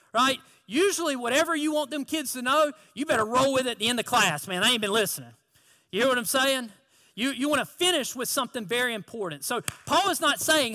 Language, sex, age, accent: English, male, 40-59, American